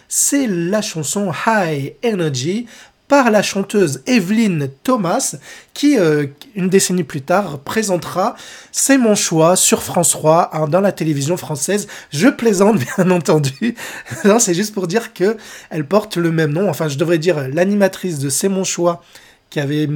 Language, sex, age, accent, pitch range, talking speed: French, male, 20-39, French, 155-210 Hz, 180 wpm